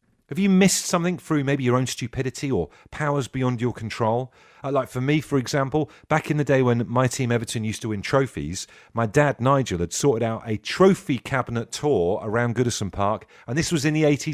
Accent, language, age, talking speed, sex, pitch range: British, English, 40-59, 210 wpm, male, 115-150 Hz